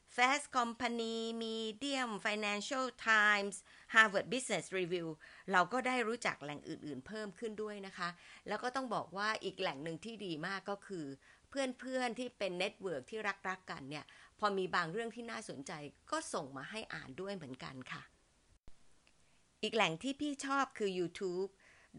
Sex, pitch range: female, 165-225 Hz